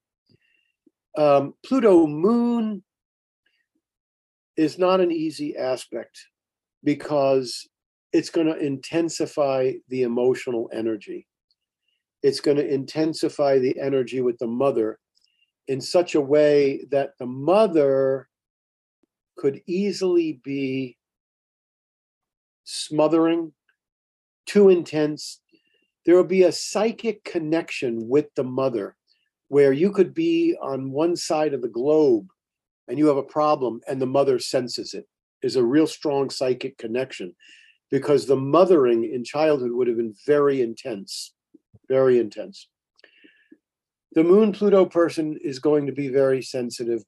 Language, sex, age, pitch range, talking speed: English, male, 50-69, 130-205 Hz, 120 wpm